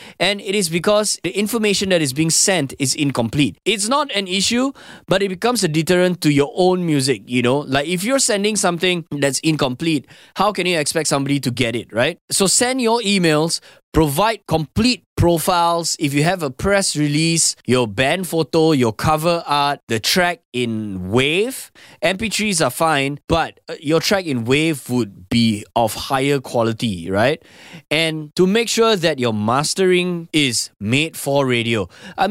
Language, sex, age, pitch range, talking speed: English, male, 20-39, 130-180 Hz, 170 wpm